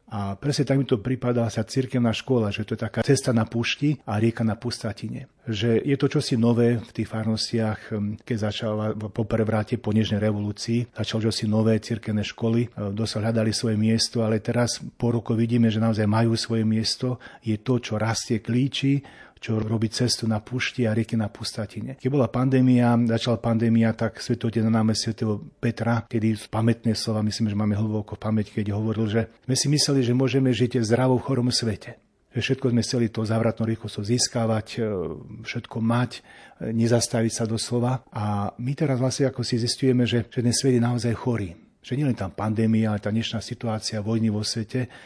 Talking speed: 180 wpm